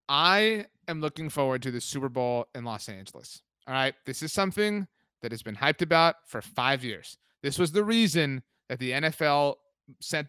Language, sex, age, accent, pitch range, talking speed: English, male, 30-49, American, 130-160 Hz, 185 wpm